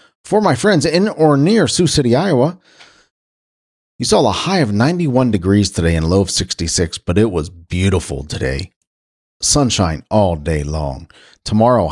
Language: English